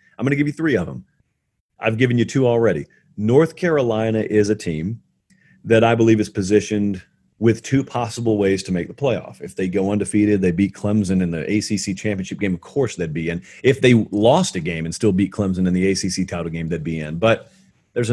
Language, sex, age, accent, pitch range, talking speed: English, male, 40-59, American, 95-130 Hz, 220 wpm